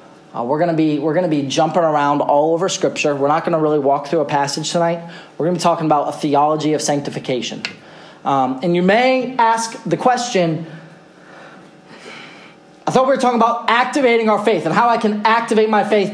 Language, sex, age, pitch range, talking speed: English, male, 30-49, 175-245 Hz, 195 wpm